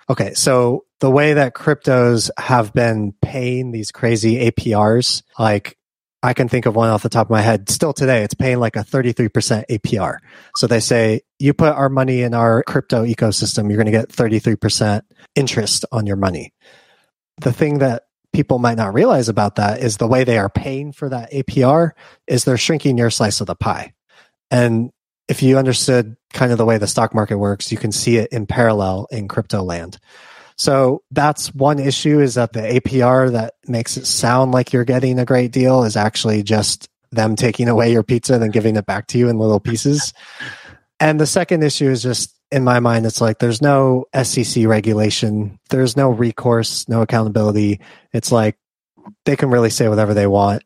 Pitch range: 110-130 Hz